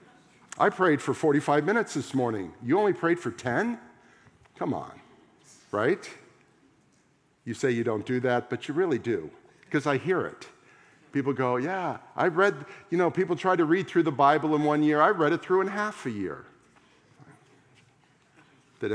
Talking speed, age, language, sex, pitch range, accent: 175 wpm, 50-69, English, male, 120-150 Hz, American